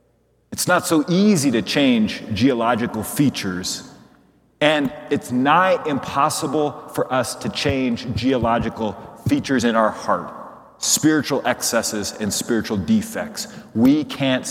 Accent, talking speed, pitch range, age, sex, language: American, 115 wpm, 130-175 Hz, 30-49, male, English